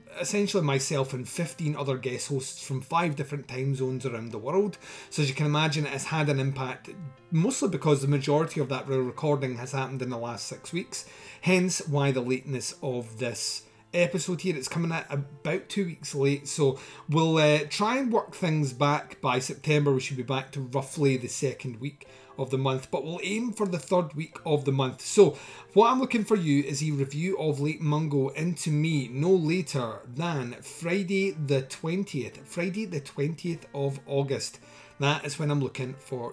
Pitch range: 130-165 Hz